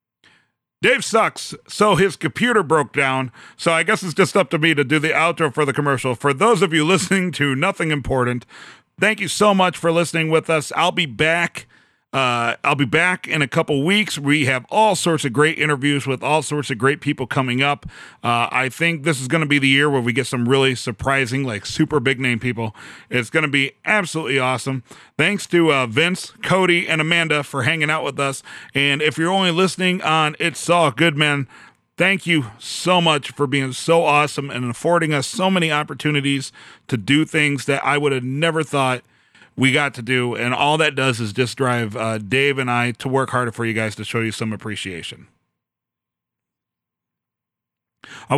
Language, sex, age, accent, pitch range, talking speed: English, male, 40-59, American, 130-165 Hz, 200 wpm